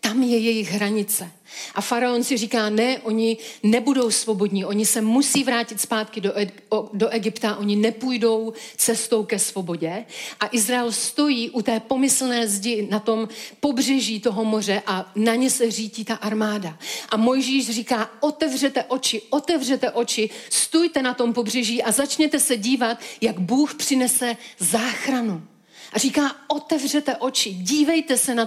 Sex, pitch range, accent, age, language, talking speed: female, 210-250 Hz, native, 40-59, Czech, 145 wpm